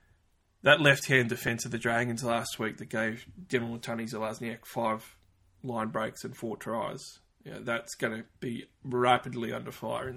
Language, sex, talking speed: English, male, 160 wpm